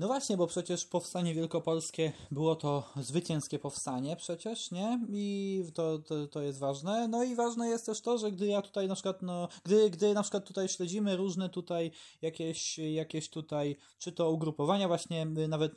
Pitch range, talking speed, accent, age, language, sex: 160-210 Hz, 175 wpm, native, 20-39, Polish, male